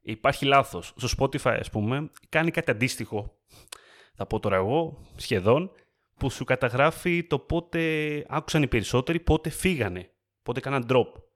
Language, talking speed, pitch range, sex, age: Greek, 145 wpm, 115-155 Hz, male, 30-49